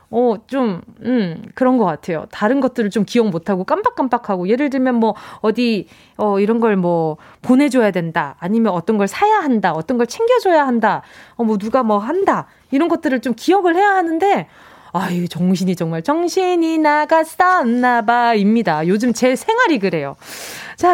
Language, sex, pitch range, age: Korean, female, 220-360 Hz, 20-39